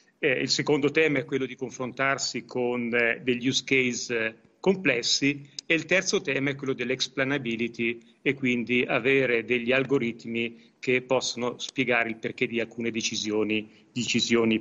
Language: Italian